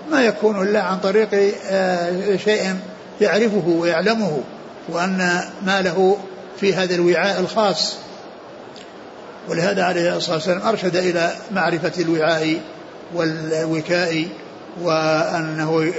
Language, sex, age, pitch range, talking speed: Arabic, male, 60-79, 170-195 Hz, 90 wpm